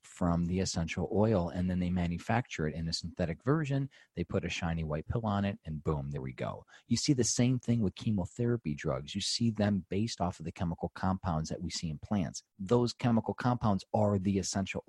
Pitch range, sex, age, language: 85-110 Hz, male, 40-59, English